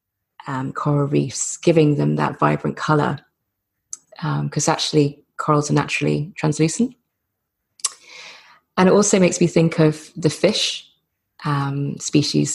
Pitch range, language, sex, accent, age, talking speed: 145-165 Hz, English, female, British, 20-39, 120 wpm